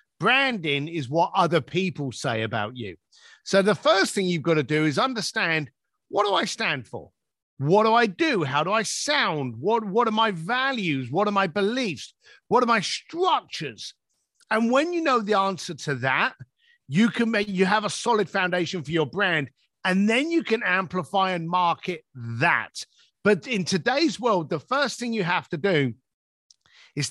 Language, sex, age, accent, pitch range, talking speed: English, male, 50-69, British, 160-225 Hz, 185 wpm